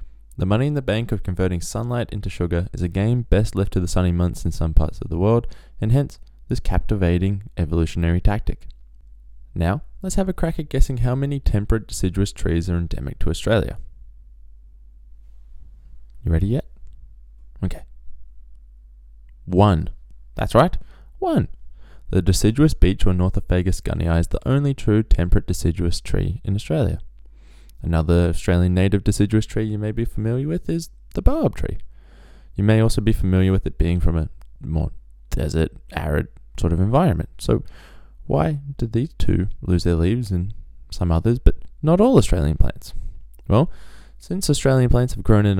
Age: 20-39